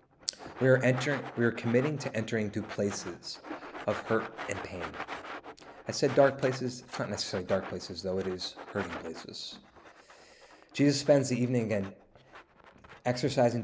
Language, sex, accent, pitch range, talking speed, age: English, male, American, 100-125 Hz, 150 wpm, 30-49